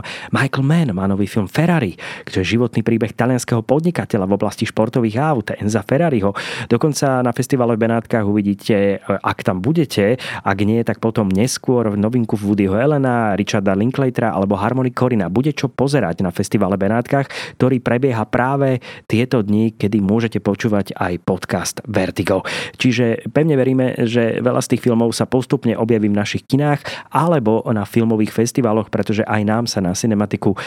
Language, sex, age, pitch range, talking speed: Slovak, male, 30-49, 100-120 Hz, 160 wpm